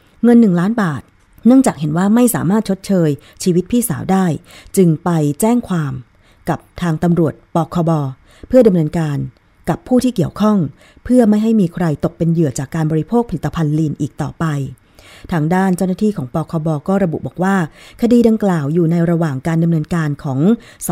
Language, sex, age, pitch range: Thai, female, 20-39, 150-190 Hz